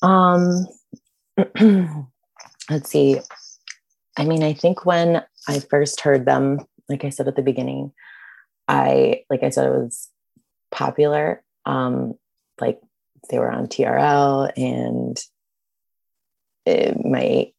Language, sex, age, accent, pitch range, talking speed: English, female, 20-39, American, 125-145 Hz, 115 wpm